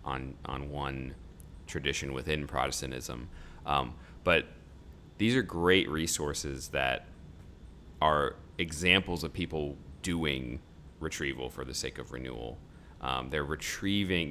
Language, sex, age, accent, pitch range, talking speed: English, male, 30-49, American, 70-85 Hz, 115 wpm